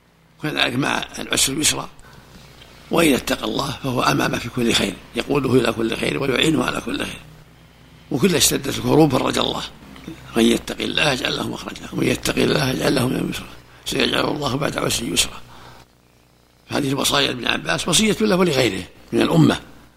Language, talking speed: Arabic, 160 wpm